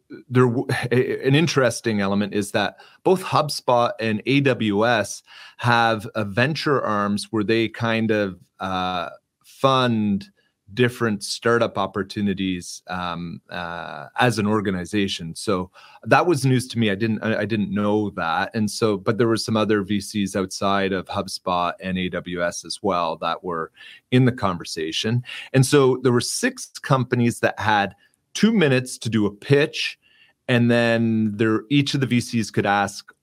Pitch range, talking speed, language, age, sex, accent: 100-125 Hz, 155 wpm, English, 30-49, male, American